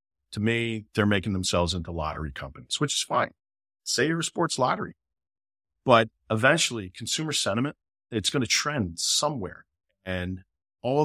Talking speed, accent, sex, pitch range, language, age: 145 wpm, American, male, 85-135 Hz, English, 40-59